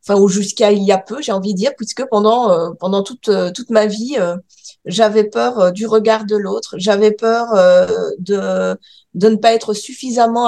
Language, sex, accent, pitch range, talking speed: French, female, French, 200-235 Hz, 200 wpm